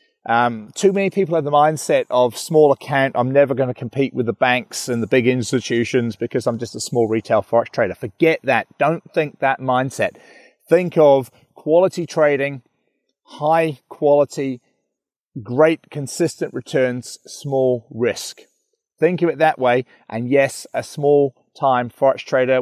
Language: English